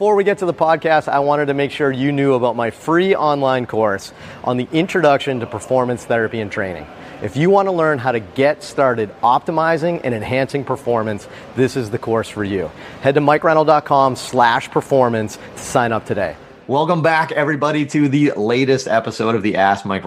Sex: male